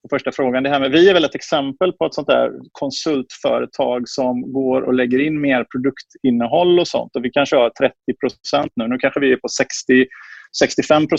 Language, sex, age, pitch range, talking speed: Swedish, male, 30-49, 125-165 Hz, 200 wpm